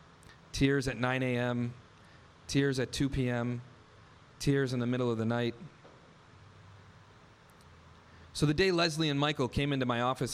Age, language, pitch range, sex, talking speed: 40-59, English, 105-145 Hz, male, 145 wpm